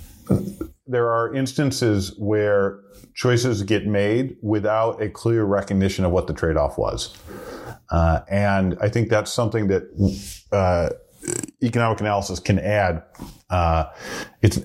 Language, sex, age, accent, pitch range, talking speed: English, male, 40-59, American, 95-115 Hz, 125 wpm